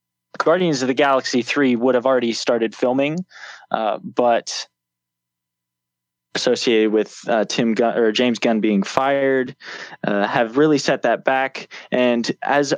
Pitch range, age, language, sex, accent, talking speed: 110-135 Hz, 20-39, English, male, American, 140 wpm